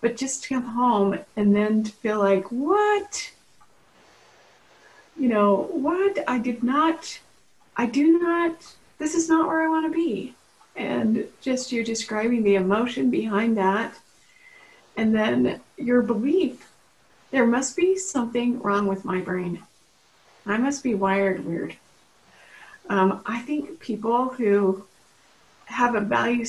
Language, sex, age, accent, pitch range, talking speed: English, female, 40-59, American, 205-270 Hz, 135 wpm